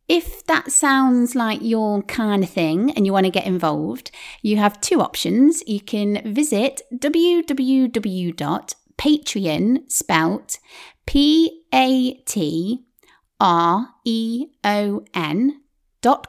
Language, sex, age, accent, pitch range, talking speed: English, female, 30-49, British, 185-260 Hz, 75 wpm